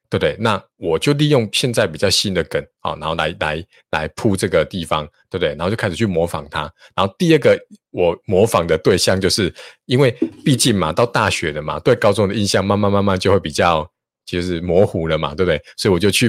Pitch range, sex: 90-110 Hz, male